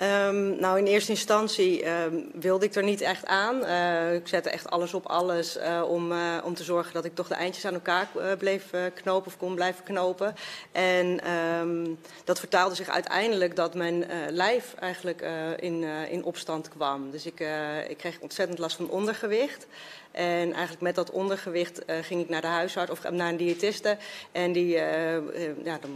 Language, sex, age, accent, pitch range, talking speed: Dutch, female, 30-49, Dutch, 165-185 Hz, 185 wpm